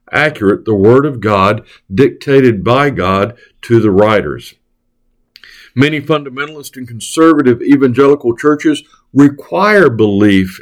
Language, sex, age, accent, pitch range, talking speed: English, male, 60-79, American, 105-140 Hz, 105 wpm